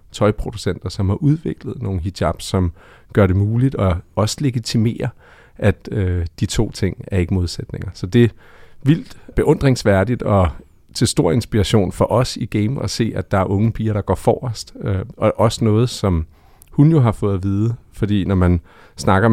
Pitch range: 95-115 Hz